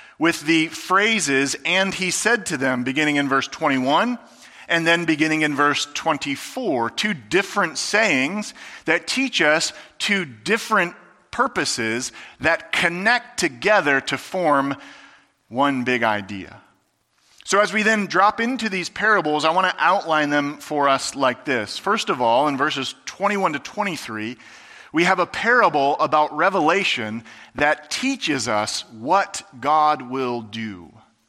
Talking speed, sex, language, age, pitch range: 140 wpm, male, English, 40-59, 140-200 Hz